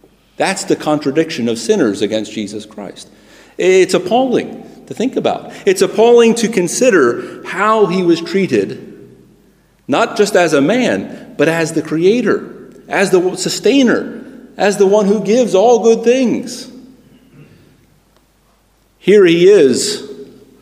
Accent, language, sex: American, English, male